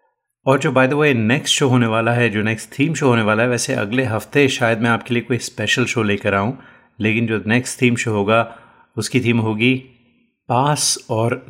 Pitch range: 100-120 Hz